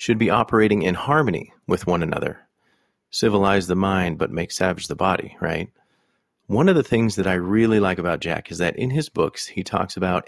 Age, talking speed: 40-59, 205 wpm